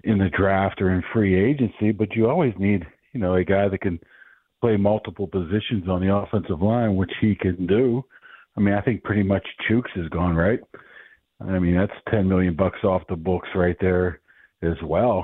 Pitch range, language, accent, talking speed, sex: 95-110 Hz, English, American, 200 wpm, male